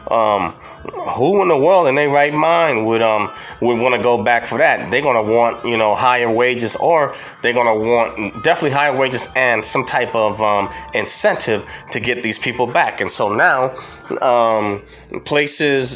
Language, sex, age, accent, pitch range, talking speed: English, male, 30-49, American, 105-130 Hz, 190 wpm